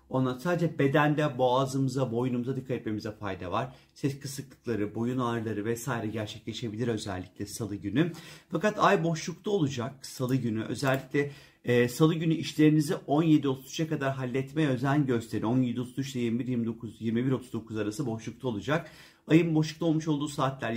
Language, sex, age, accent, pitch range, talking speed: Turkish, male, 40-59, native, 120-155 Hz, 135 wpm